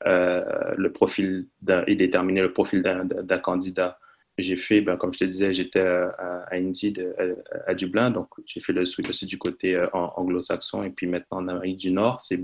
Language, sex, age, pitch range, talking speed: French, male, 20-39, 90-95 Hz, 200 wpm